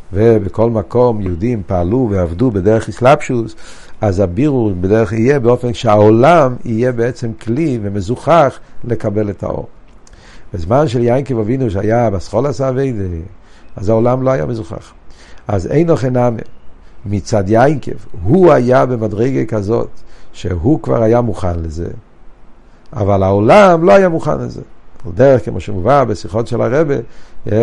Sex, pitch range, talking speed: male, 110-140 Hz, 130 wpm